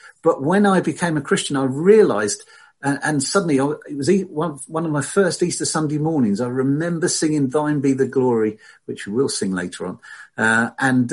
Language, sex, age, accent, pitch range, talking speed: English, male, 50-69, British, 130-185 Hz, 180 wpm